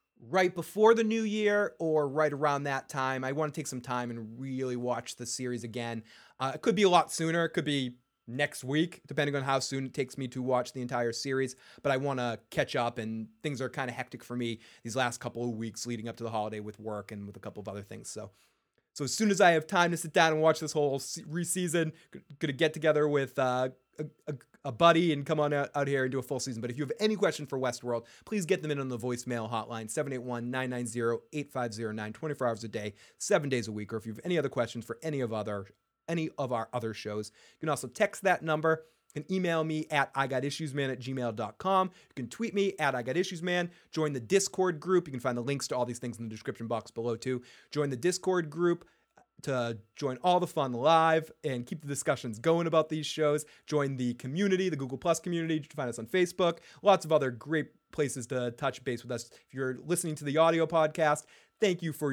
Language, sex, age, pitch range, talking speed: English, male, 30-49, 120-160 Hz, 235 wpm